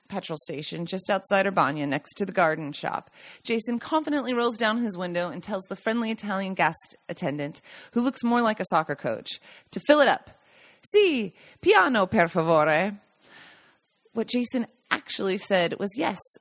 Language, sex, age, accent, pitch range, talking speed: English, female, 30-49, American, 175-245 Hz, 165 wpm